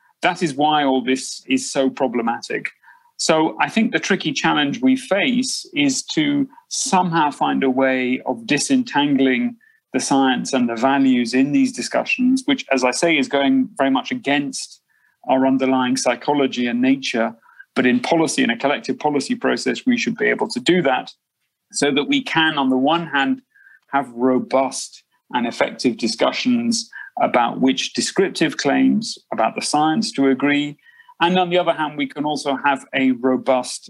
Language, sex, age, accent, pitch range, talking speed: English, male, 30-49, British, 130-205 Hz, 165 wpm